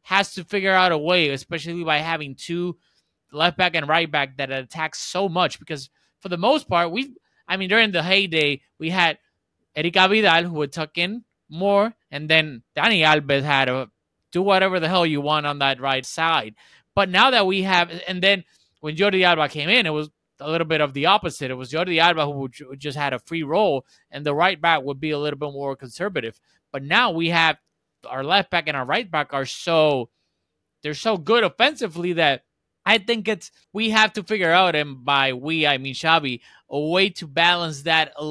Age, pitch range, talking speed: 20-39, 150-190 Hz, 210 wpm